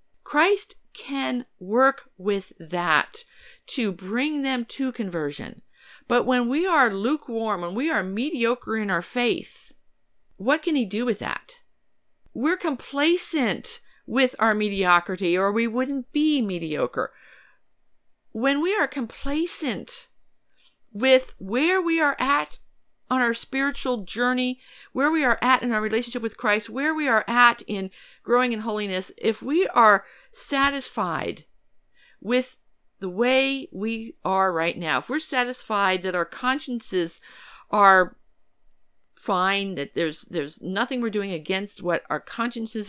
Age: 50-69